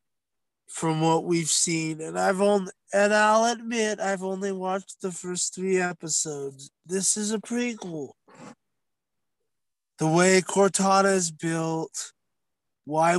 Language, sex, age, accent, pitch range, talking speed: English, male, 20-39, American, 160-205 Hz, 125 wpm